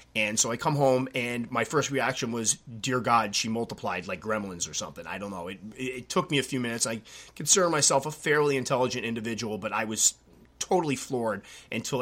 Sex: male